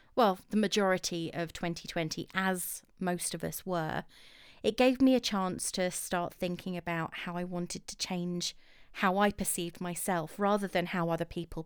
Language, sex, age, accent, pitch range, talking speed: English, female, 30-49, British, 170-210 Hz, 170 wpm